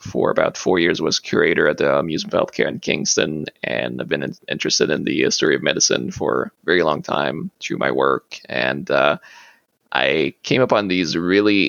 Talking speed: 195 wpm